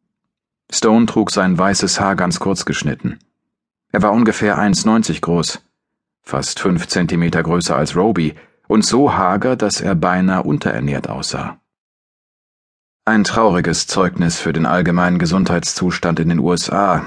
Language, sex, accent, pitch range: German, male, German, 85-105 Hz